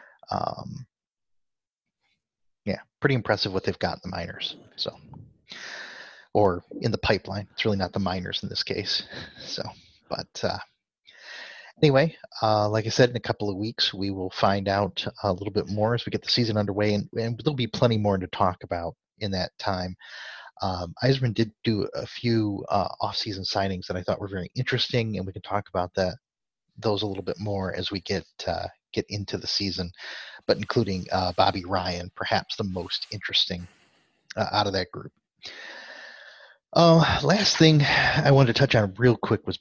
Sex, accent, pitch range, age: male, American, 95-115 Hz, 30-49